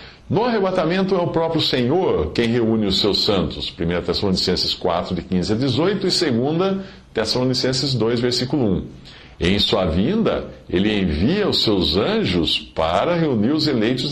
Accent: Brazilian